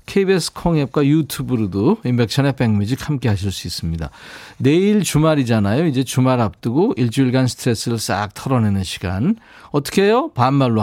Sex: male